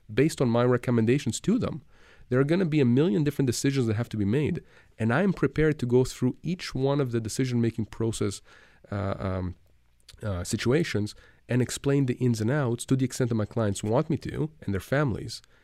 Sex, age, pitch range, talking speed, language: male, 30-49, 105-135 Hz, 210 wpm, English